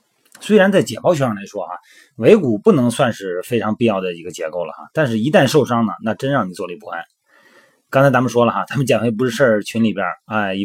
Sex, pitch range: male, 100-120 Hz